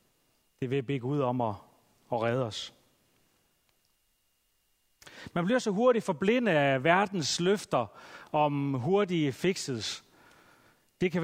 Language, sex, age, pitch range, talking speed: Danish, male, 40-59, 135-185 Hz, 115 wpm